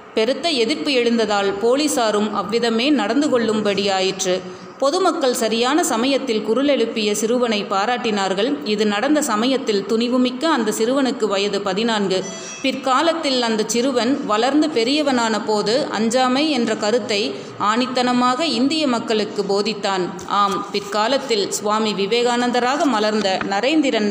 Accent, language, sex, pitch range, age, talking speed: native, Tamil, female, 210-270 Hz, 30-49, 100 wpm